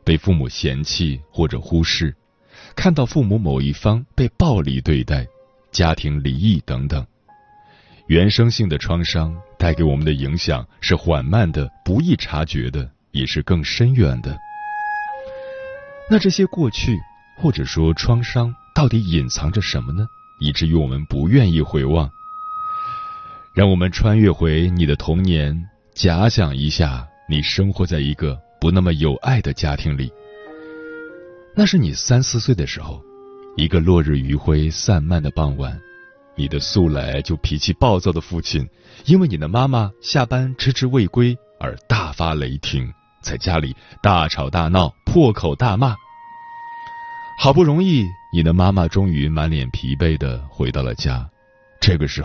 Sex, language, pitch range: male, Chinese, 75-130 Hz